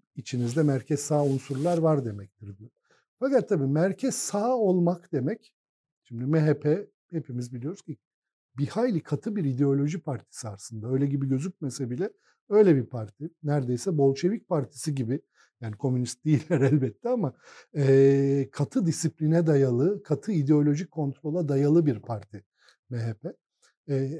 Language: Turkish